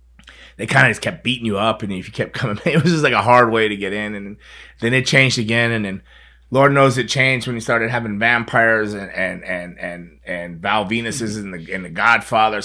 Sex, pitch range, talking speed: male, 95-125 Hz, 230 wpm